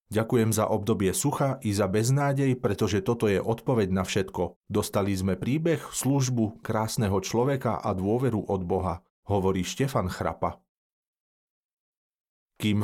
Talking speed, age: 125 wpm, 40-59